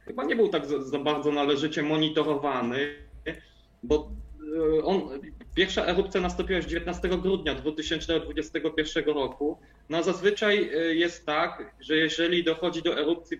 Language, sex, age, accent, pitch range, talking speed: Polish, male, 20-39, native, 135-165 Hz, 120 wpm